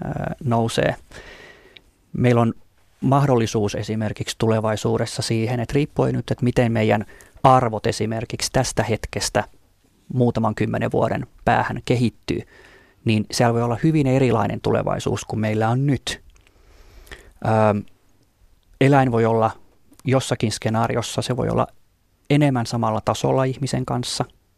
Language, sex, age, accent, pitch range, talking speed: Finnish, male, 30-49, native, 110-125 Hz, 110 wpm